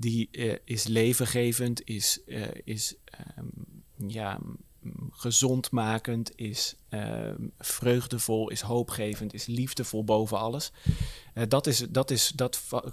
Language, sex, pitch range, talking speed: Dutch, male, 110-125 Hz, 120 wpm